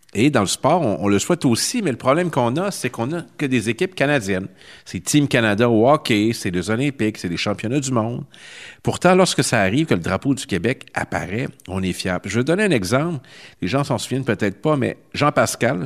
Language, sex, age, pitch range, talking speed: French, male, 50-69, 100-135 Hz, 225 wpm